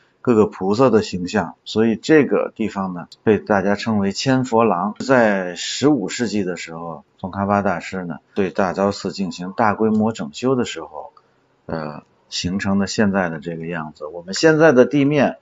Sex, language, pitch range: male, Chinese, 95-125 Hz